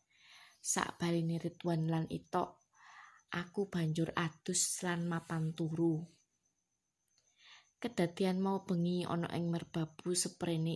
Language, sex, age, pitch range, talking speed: Indonesian, female, 20-39, 160-185 Hz, 100 wpm